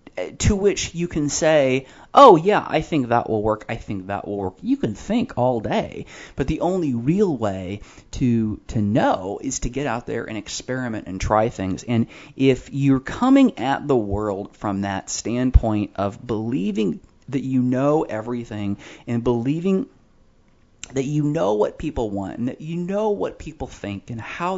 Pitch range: 100-140 Hz